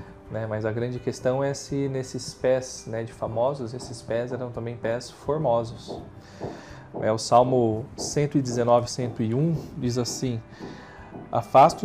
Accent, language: Brazilian, Portuguese